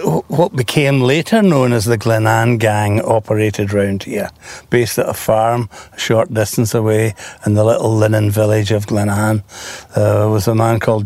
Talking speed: 180 wpm